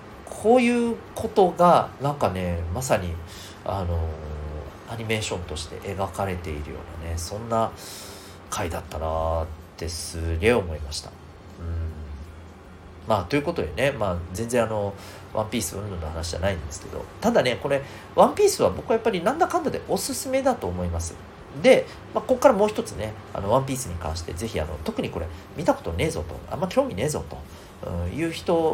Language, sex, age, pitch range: Japanese, male, 40-59, 85-135 Hz